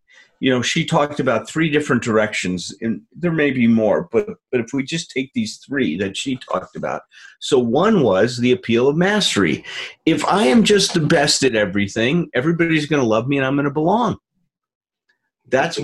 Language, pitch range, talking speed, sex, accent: English, 130-200 Hz, 195 wpm, male, American